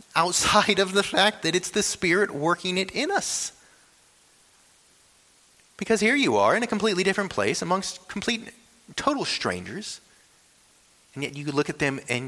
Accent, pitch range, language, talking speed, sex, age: American, 100-140 Hz, English, 155 wpm, male, 30-49